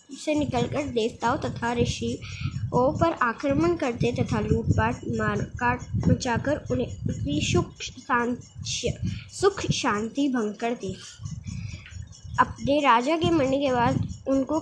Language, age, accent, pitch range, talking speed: Hindi, 20-39, native, 235-285 Hz, 105 wpm